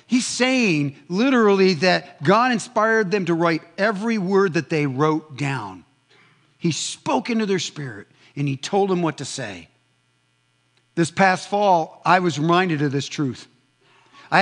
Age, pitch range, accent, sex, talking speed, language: 50-69, 155-225 Hz, American, male, 155 wpm, English